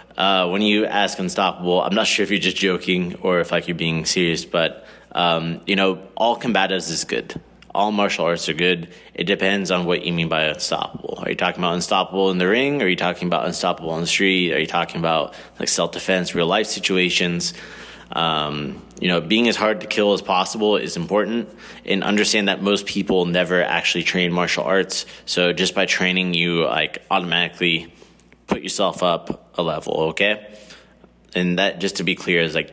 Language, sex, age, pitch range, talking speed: English, male, 20-39, 85-100 Hz, 195 wpm